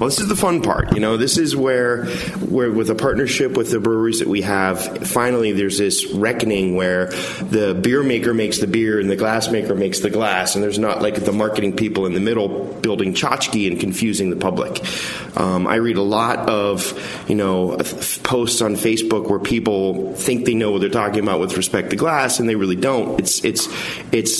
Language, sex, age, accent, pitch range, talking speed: English, male, 30-49, American, 100-120 Hz, 210 wpm